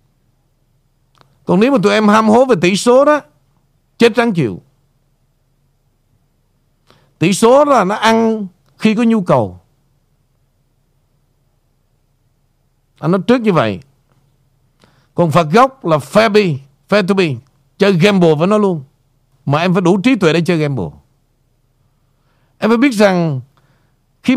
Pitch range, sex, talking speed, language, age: 135-205 Hz, male, 140 wpm, Vietnamese, 60-79